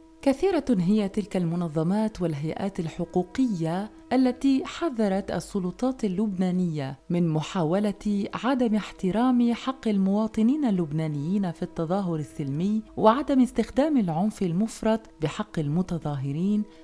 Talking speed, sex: 95 wpm, female